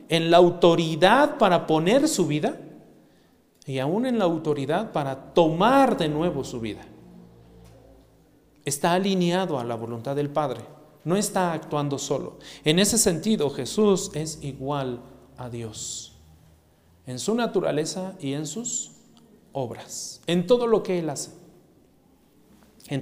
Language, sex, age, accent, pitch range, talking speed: Spanish, male, 40-59, Mexican, 135-195 Hz, 135 wpm